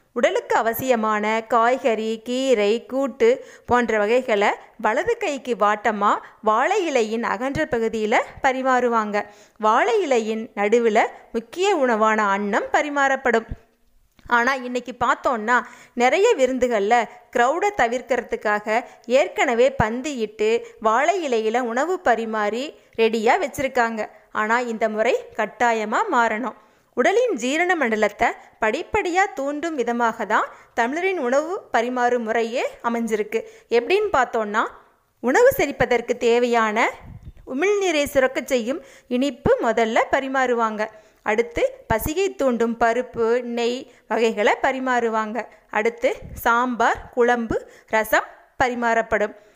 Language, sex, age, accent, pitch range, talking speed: Tamil, female, 20-39, native, 225-275 Hz, 95 wpm